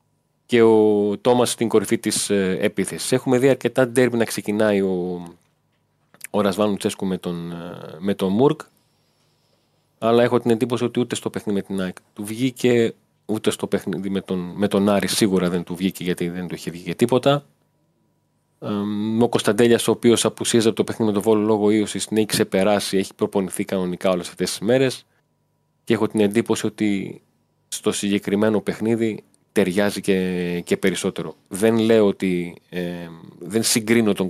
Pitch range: 95-120 Hz